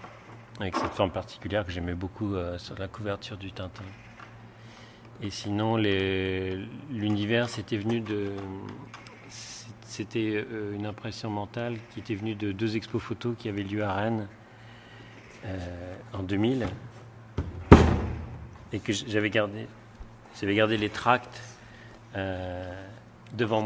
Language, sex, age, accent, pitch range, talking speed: French, male, 40-59, French, 100-115 Hz, 125 wpm